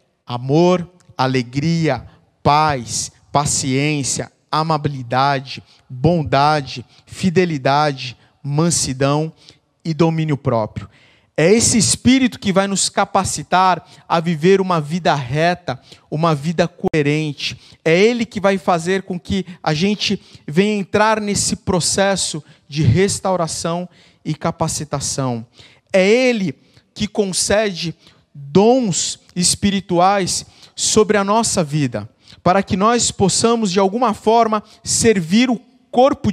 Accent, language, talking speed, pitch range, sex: Brazilian, Portuguese, 105 wpm, 140-195 Hz, male